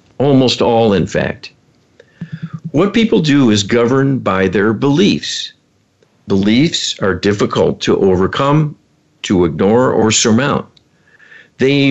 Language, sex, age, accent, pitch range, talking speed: English, male, 50-69, American, 100-135 Hz, 110 wpm